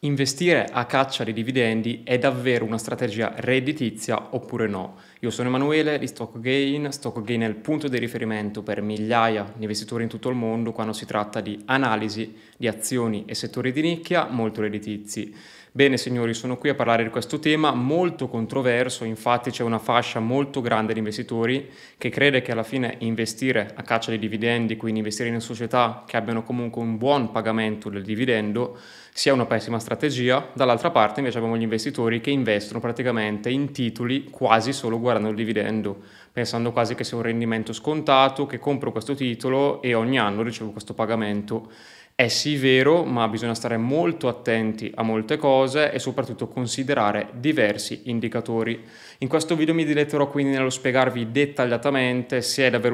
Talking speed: 170 wpm